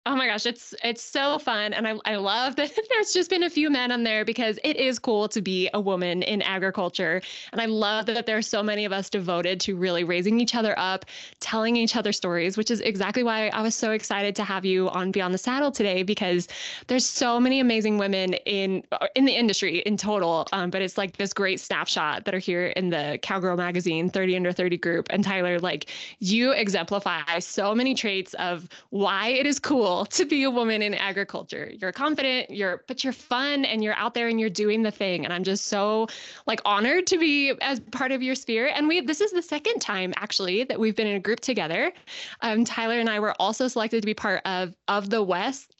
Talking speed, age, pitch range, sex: 230 wpm, 20-39, 190-245 Hz, female